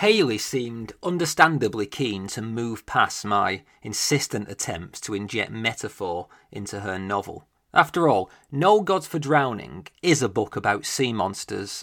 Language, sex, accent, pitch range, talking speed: English, male, British, 110-150 Hz, 140 wpm